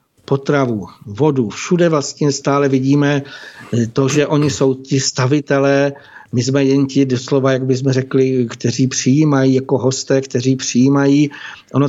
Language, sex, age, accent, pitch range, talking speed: Czech, male, 60-79, native, 130-140 Hz, 135 wpm